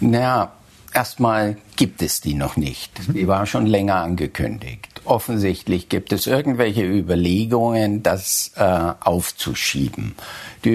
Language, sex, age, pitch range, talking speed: German, male, 50-69, 100-125 Hz, 115 wpm